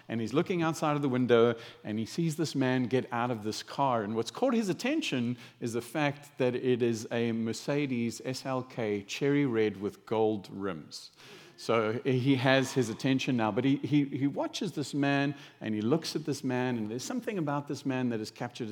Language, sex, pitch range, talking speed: English, male, 115-145 Hz, 205 wpm